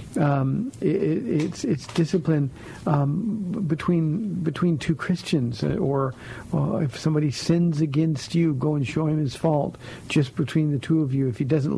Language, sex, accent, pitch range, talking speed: English, male, American, 140-175 Hz, 165 wpm